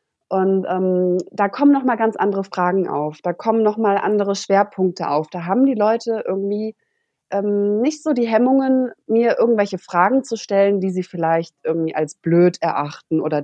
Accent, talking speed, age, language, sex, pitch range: German, 170 wpm, 20-39, German, female, 175-225 Hz